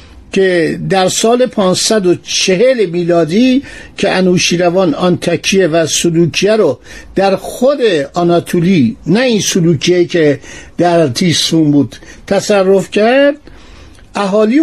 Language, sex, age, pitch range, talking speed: Persian, male, 60-79, 175-235 Hz, 110 wpm